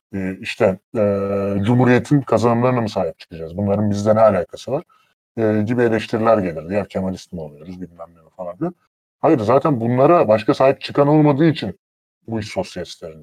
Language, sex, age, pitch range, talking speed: Turkish, female, 30-49, 105-155 Hz, 155 wpm